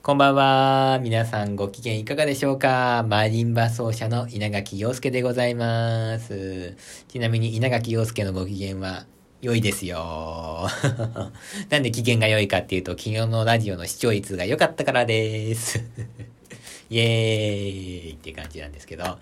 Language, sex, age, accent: Japanese, male, 40-59, native